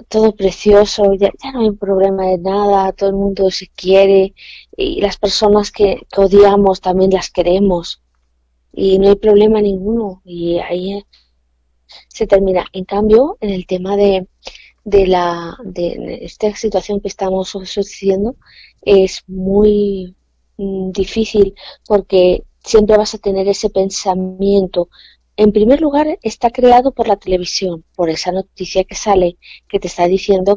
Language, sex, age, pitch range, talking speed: Spanish, female, 20-39, 180-205 Hz, 145 wpm